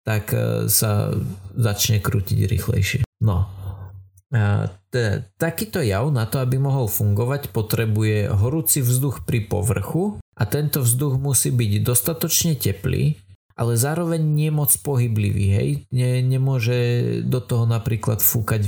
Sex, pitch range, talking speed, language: male, 105-130 Hz, 120 wpm, Slovak